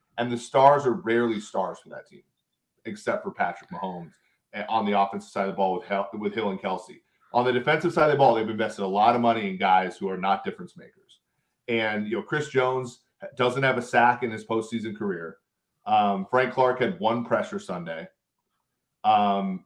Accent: American